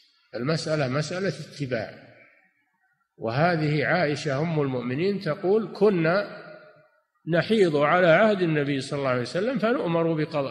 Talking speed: 110 wpm